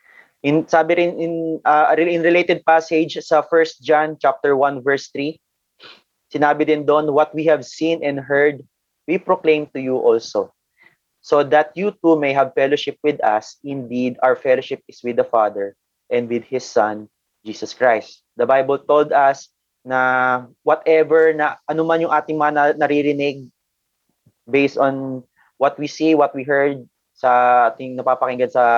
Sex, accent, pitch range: male, Filipino, 130-160 Hz